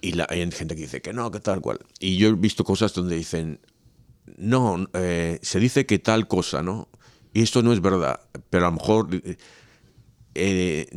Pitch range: 80-105 Hz